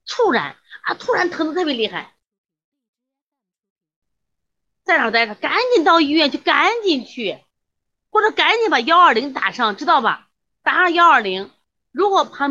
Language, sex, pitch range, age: Chinese, female, 200-330 Hz, 30-49